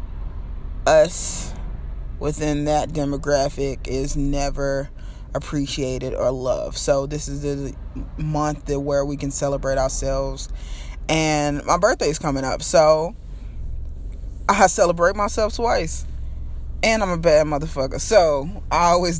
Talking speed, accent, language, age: 120 wpm, American, English, 20-39